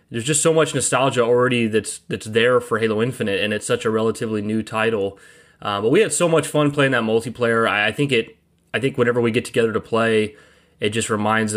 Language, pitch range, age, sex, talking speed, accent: English, 110-130 Hz, 20-39, male, 230 wpm, American